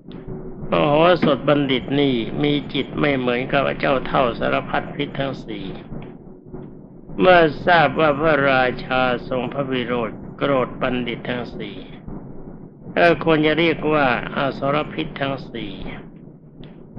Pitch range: 130-160 Hz